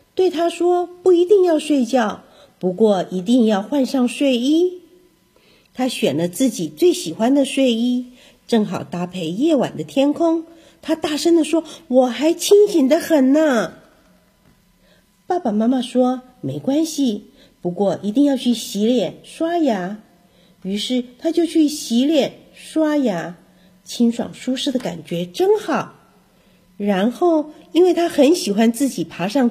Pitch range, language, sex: 185-315 Hz, Chinese, female